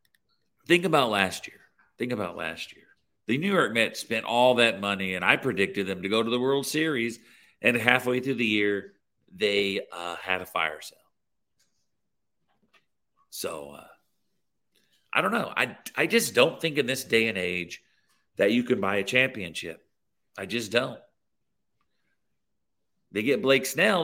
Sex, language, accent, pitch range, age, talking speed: male, English, American, 105-140 Hz, 50-69, 160 wpm